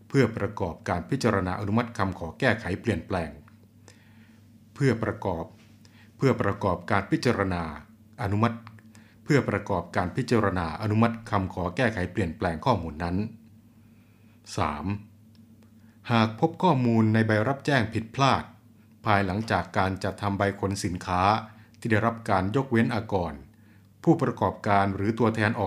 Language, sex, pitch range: Thai, male, 100-115 Hz